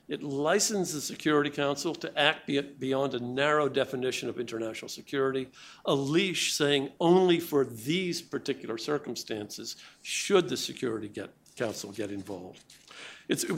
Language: English